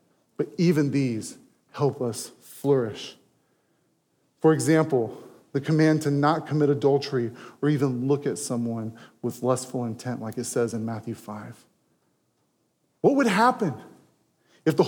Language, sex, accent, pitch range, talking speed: English, male, American, 140-190 Hz, 135 wpm